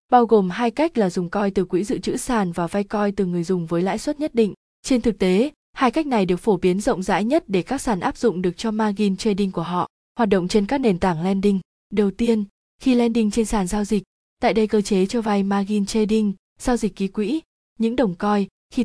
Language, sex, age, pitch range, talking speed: Vietnamese, female, 20-39, 195-235 Hz, 245 wpm